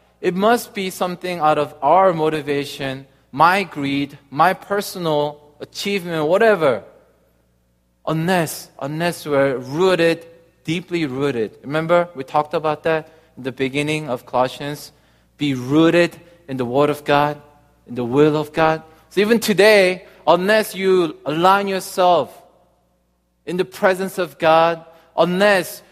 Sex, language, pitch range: male, Korean, 150-195 Hz